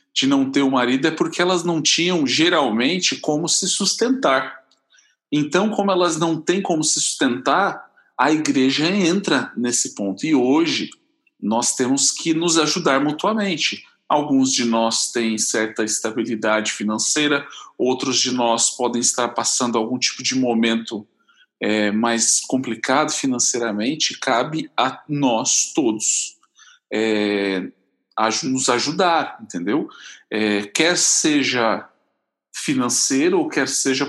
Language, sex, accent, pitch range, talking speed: Portuguese, male, Brazilian, 115-170 Hz, 125 wpm